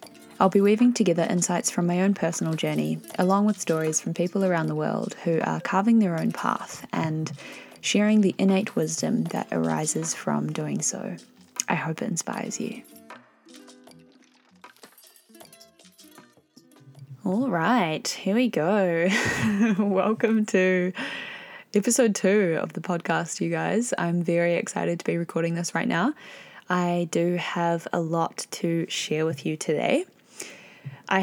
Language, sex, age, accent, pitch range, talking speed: English, female, 20-39, Australian, 165-205 Hz, 140 wpm